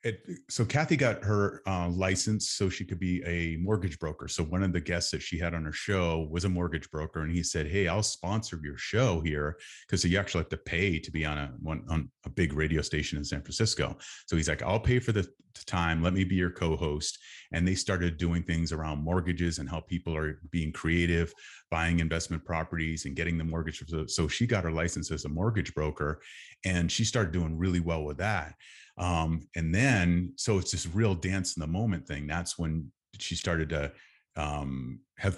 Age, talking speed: 30-49, 215 wpm